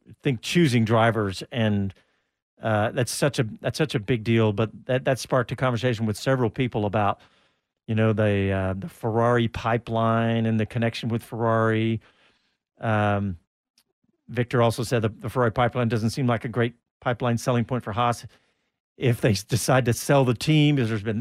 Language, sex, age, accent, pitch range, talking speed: English, male, 50-69, American, 110-135 Hz, 180 wpm